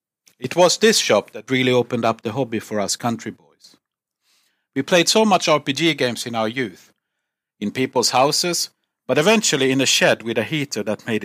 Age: 50-69